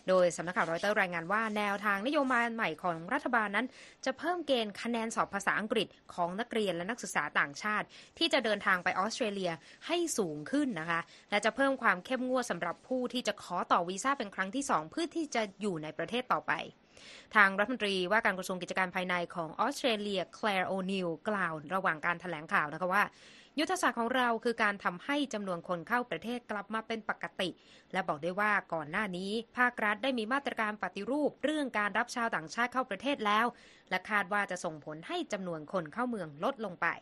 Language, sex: Thai, female